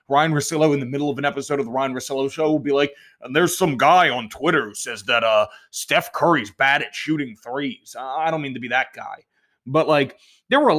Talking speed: 245 wpm